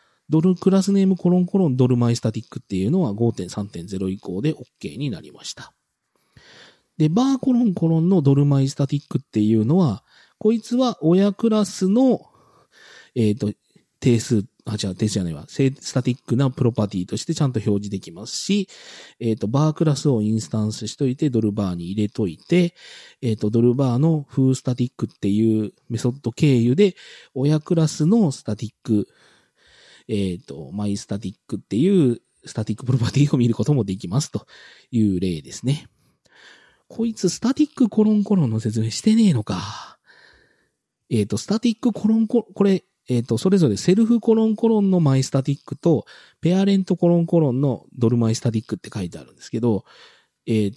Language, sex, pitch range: Japanese, male, 110-185 Hz